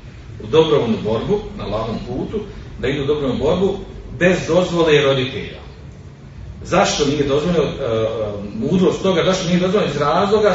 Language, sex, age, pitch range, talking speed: Croatian, male, 40-59, 125-185 Hz, 140 wpm